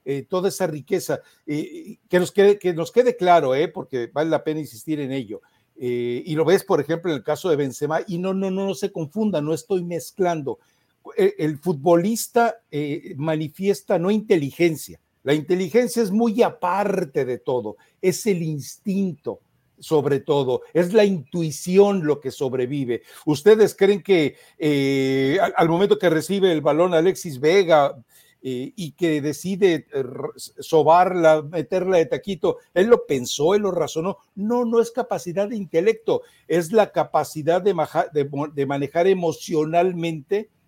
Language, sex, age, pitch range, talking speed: Spanish, male, 60-79, 150-200 Hz, 155 wpm